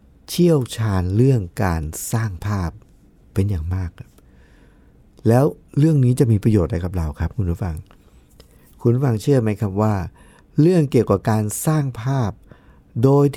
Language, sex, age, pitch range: Thai, male, 60-79, 95-140 Hz